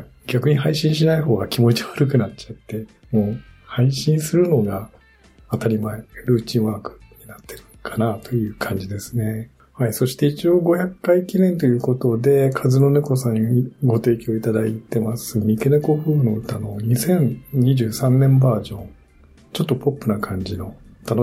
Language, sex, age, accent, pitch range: Japanese, male, 50-69, native, 110-130 Hz